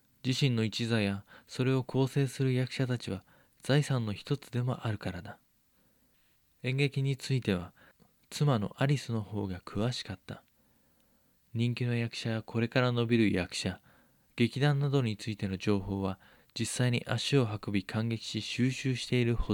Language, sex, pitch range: Japanese, male, 105-130 Hz